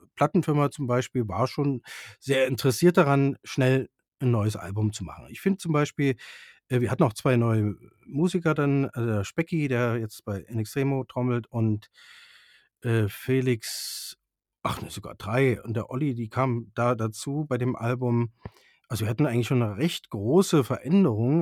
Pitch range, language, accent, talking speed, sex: 115-150 Hz, German, German, 170 wpm, male